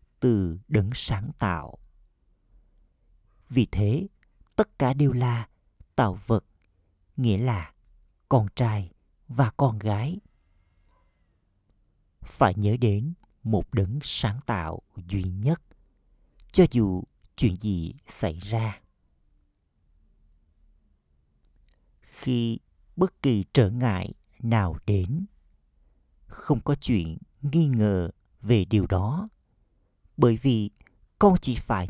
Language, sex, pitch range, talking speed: Vietnamese, male, 85-120 Hz, 100 wpm